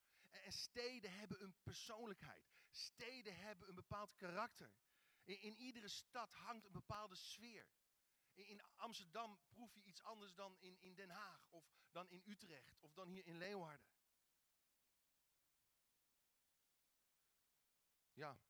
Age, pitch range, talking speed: 40-59, 165-205 Hz, 130 wpm